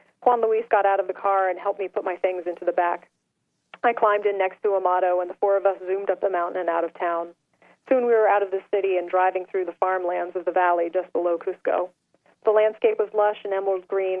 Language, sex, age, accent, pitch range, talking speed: English, female, 40-59, American, 180-210 Hz, 255 wpm